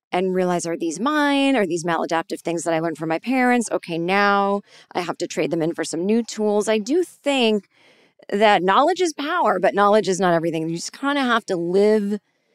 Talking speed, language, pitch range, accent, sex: 220 wpm, English, 170-230 Hz, American, female